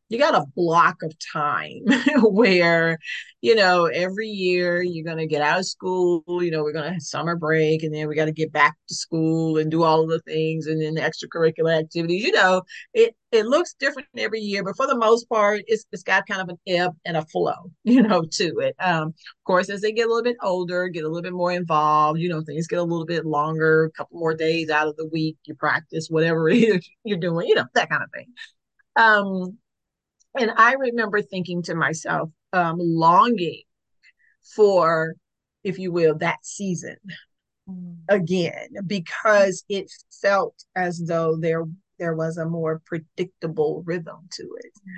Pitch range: 160-195 Hz